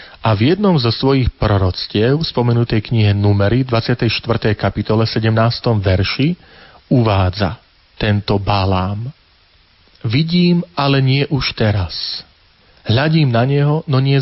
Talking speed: 110 wpm